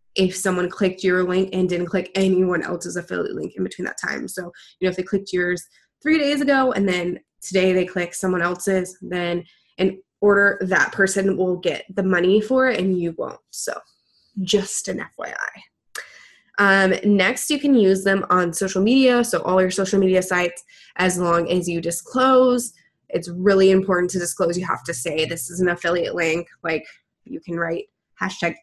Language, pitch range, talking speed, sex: English, 180-215 Hz, 190 wpm, female